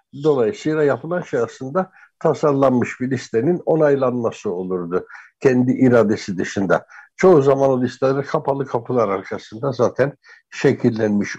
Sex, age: male, 60-79